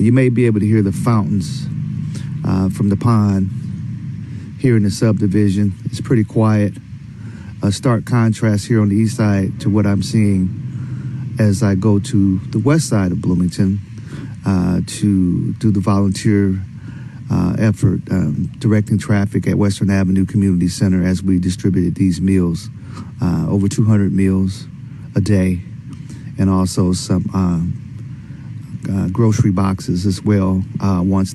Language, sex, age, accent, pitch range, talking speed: English, male, 40-59, American, 95-120 Hz, 145 wpm